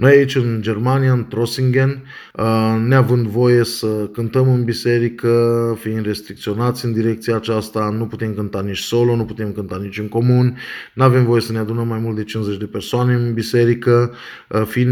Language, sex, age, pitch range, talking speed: Romanian, male, 20-39, 115-135 Hz, 175 wpm